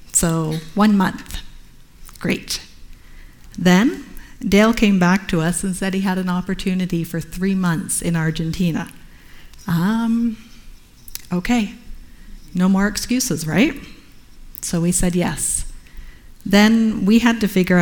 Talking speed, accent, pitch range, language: 120 wpm, American, 165-195 Hz, English